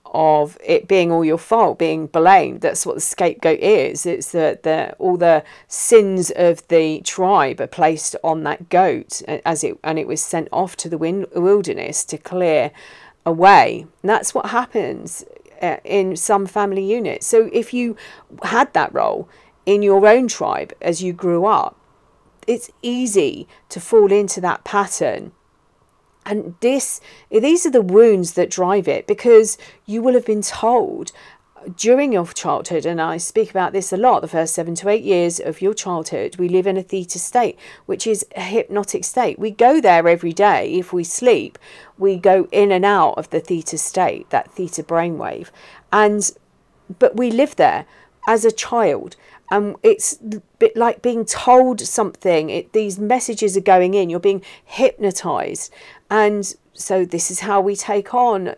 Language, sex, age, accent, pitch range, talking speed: English, female, 40-59, British, 180-230 Hz, 170 wpm